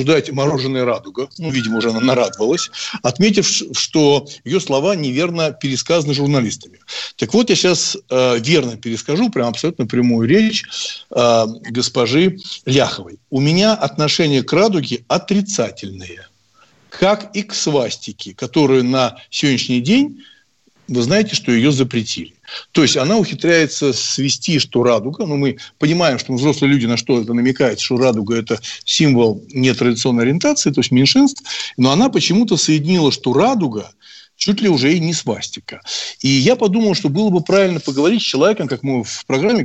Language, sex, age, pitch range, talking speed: Russian, male, 60-79, 125-175 Hz, 150 wpm